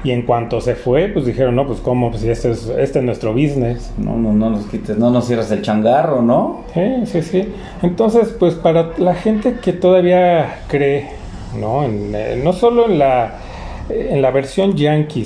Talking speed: 205 wpm